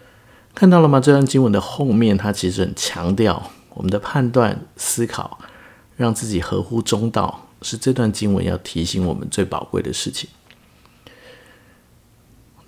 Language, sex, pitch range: Chinese, male, 95-125 Hz